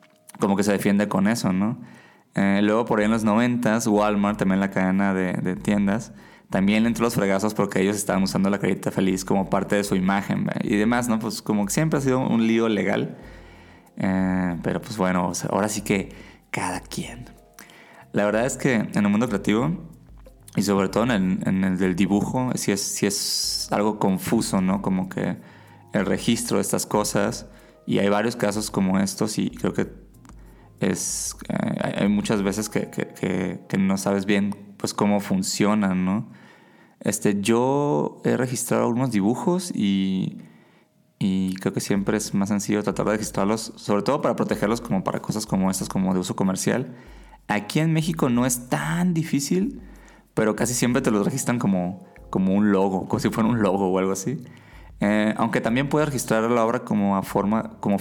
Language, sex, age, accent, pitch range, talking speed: Spanish, male, 20-39, Mexican, 95-120 Hz, 190 wpm